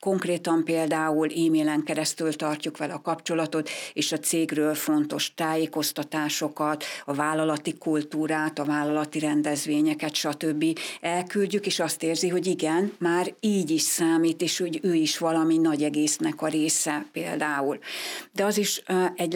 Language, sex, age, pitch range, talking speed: Hungarian, female, 60-79, 155-175 Hz, 135 wpm